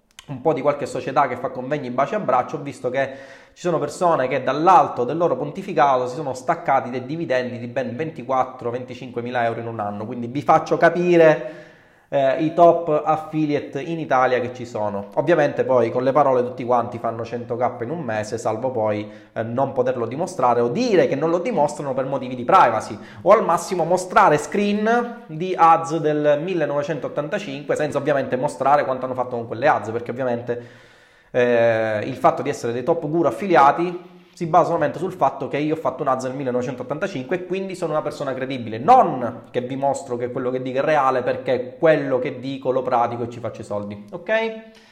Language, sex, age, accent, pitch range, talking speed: Italian, male, 20-39, native, 125-170 Hz, 195 wpm